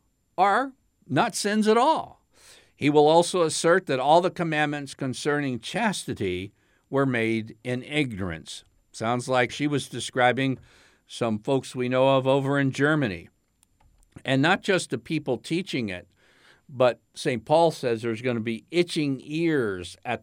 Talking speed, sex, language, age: 150 wpm, male, English, 60-79